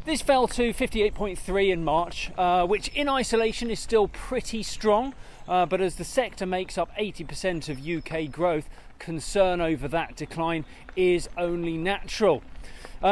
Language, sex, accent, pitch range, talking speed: English, male, British, 165-230 Hz, 150 wpm